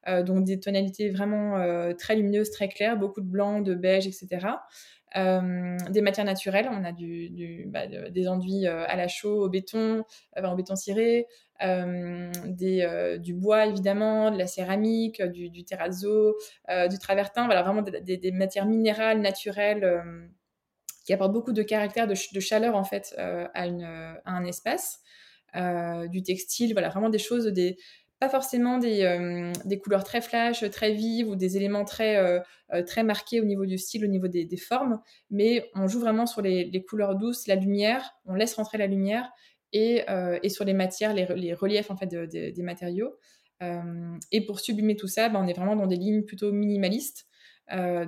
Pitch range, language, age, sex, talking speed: 185-215 Hz, French, 20-39, female, 190 wpm